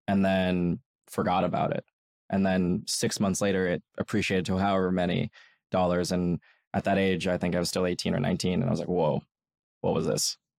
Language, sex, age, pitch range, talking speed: English, male, 20-39, 95-110 Hz, 205 wpm